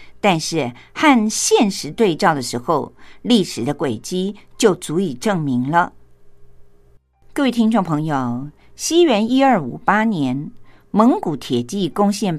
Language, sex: Japanese, female